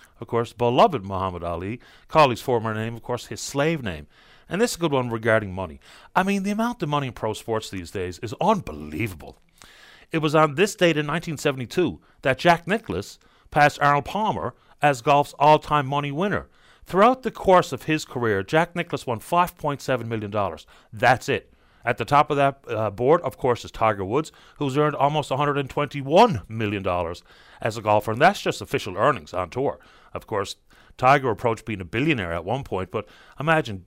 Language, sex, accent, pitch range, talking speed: English, male, American, 105-150 Hz, 185 wpm